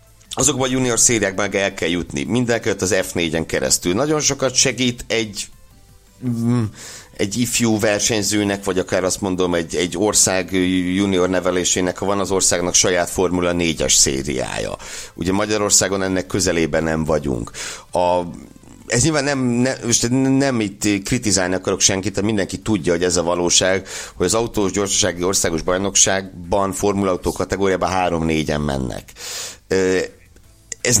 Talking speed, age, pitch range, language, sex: 135 wpm, 60-79, 85-105 Hz, Hungarian, male